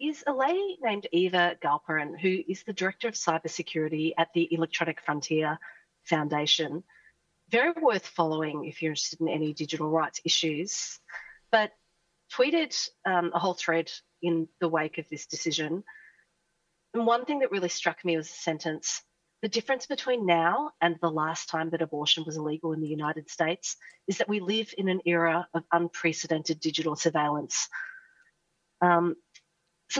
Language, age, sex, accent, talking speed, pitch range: English, 40-59, female, Australian, 155 wpm, 160-185 Hz